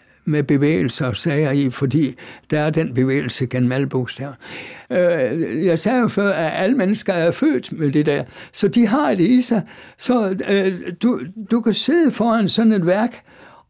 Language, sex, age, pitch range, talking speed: Danish, male, 60-79, 140-210 Hz, 170 wpm